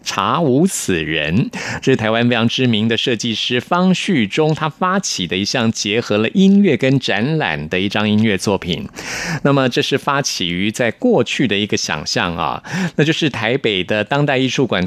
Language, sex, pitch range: Chinese, male, 110-165 Hz